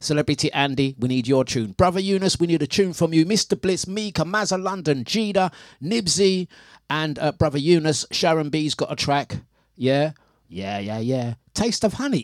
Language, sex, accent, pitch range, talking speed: English, male, British, 125-175 Hz, 180 wpm